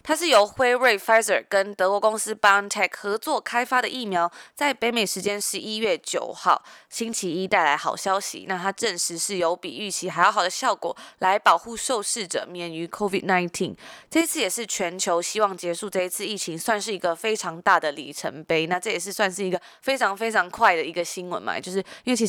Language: Chinese